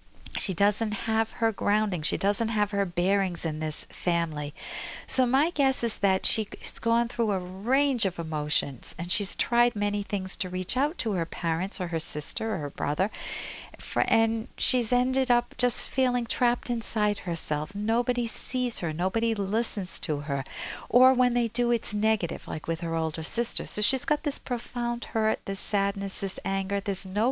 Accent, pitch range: American, 170-240 Hz